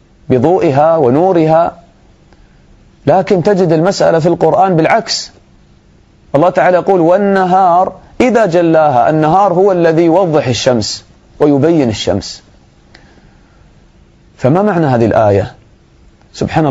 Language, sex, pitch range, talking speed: English, male, 125-185 Hz, 95 wpm